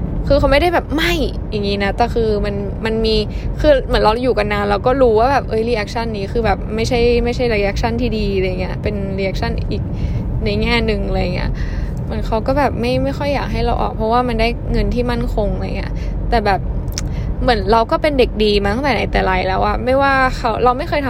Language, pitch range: Thai, 205-255 Hz